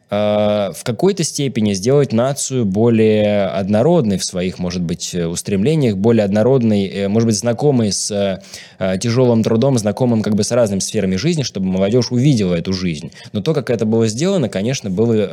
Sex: male